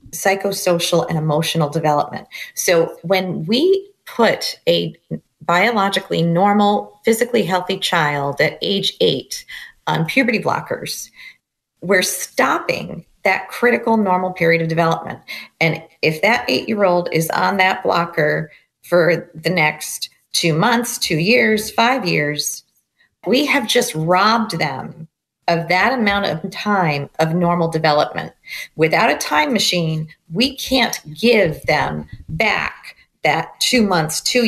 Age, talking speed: 40-59, 125 wpm